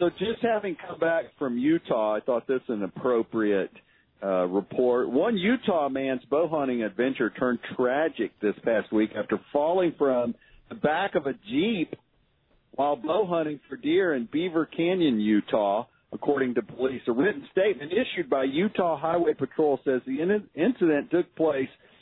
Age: 50-69